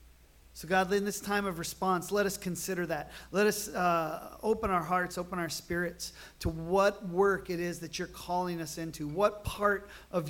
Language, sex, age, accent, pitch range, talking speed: English, male, 40-59, American, 140-180 Hz, 190 wpm